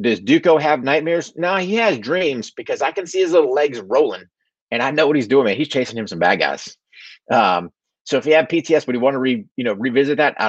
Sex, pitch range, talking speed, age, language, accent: male, 100-155 Hz, 255 wpm, 30-49, English, American